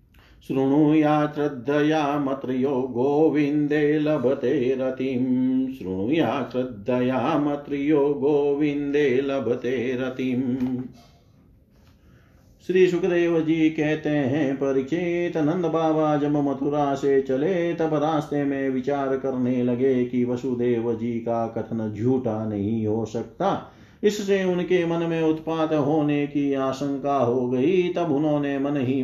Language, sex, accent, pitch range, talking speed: Hindi, male, native, 130-160 Hz, 115 wpm